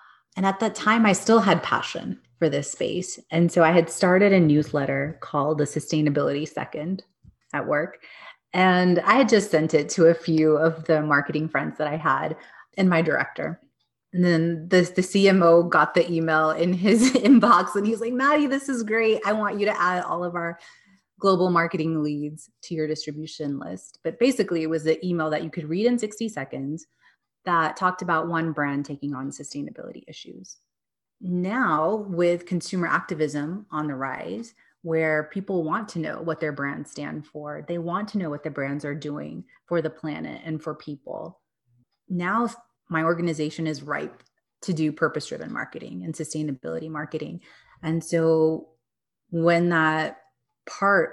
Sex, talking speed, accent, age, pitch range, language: female, 170 wpm, American, 30-49, 150-185 Hz, English